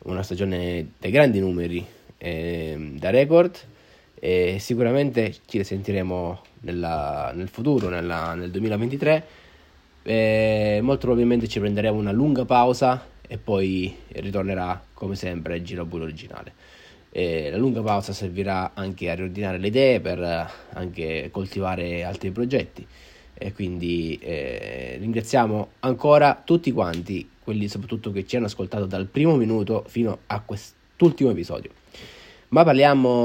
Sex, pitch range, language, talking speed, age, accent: male, 90-120 Hz, Italian, 130 wpm, 20-39, native